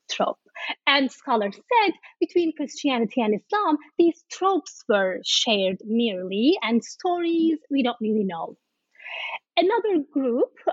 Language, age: English, 30-49